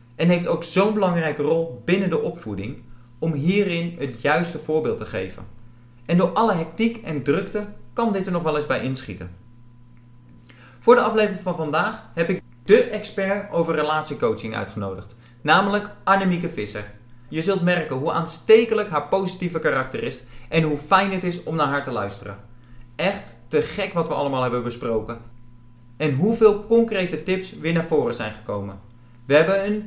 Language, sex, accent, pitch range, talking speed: Dutch, male, Dutch, 120-195 Hz, 170 wpm